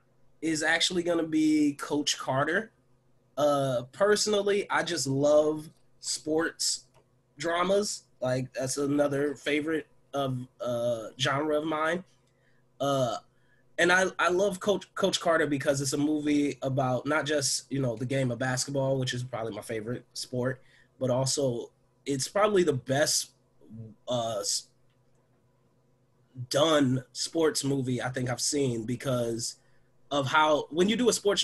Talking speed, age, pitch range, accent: 135 wpm, 20-39, 125-150 Hz, American